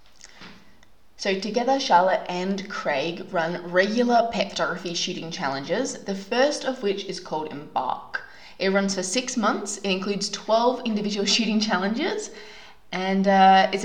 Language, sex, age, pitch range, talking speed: English, female, 20-39, 180-230 Hz, 140 wpm